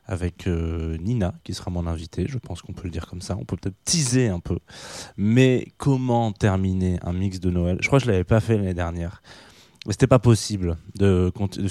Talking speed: 220 wpm